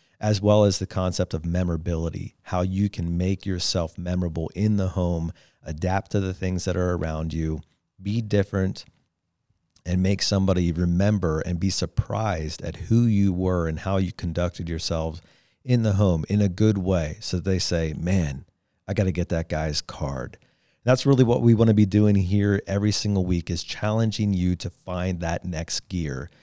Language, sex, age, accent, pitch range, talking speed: English, male, 40-59, American, 85-105 Hz, 180 wpm